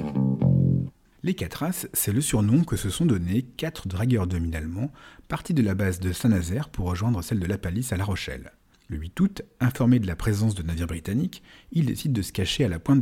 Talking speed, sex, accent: 220 wpm, male, French